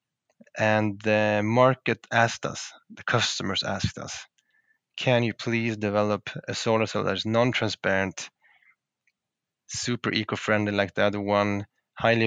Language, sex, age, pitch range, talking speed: English, male, 20-39, 100-115 Hz, 125 wpm